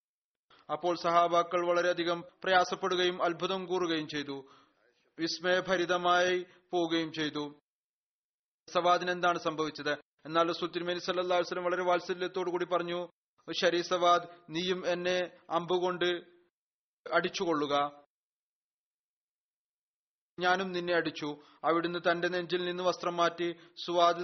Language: Malayalam